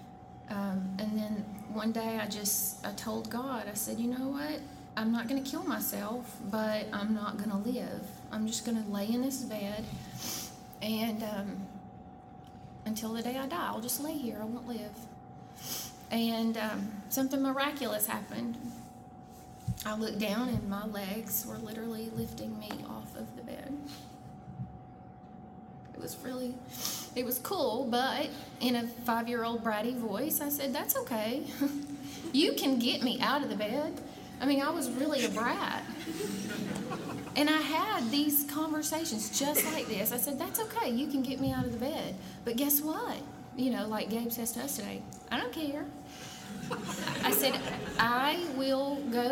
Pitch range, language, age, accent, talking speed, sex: 210-270 Hz, English, 20-39, American, 170 wpm, female